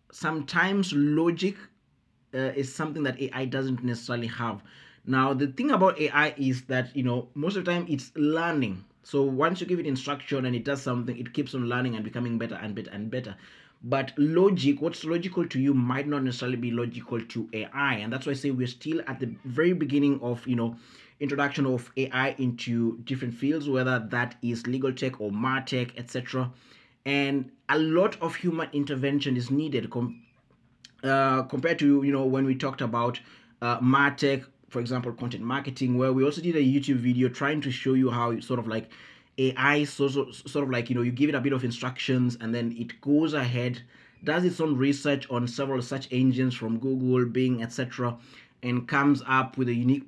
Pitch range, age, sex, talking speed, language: 120-140 Hz, 20-39, male, 195 wpm, English